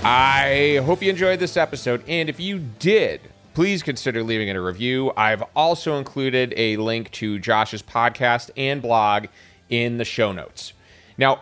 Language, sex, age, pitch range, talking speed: English, male, 30-49, 110-145 Hz, 165 wpm